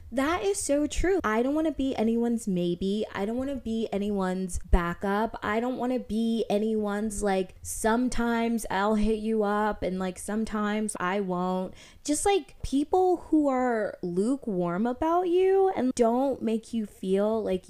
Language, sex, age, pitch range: English, female, 20-39, 205-300 Hz